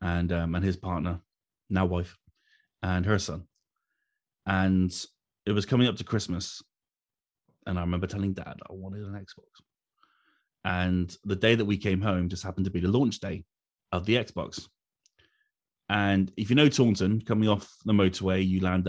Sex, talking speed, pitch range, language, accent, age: male, 170 wpm, 90-105 Hz, English, British, 30-49